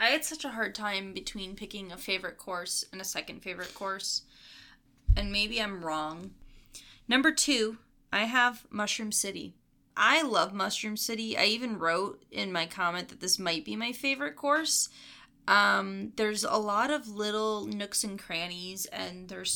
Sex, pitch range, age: female, 175-215 Hz, 20-39